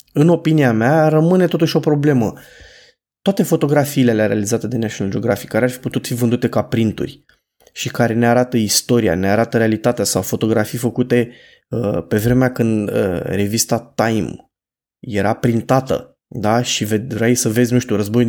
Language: Romanian